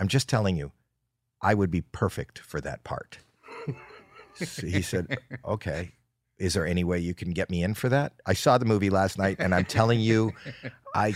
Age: 50-69